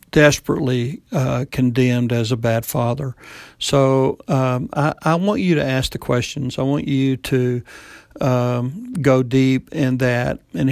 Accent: American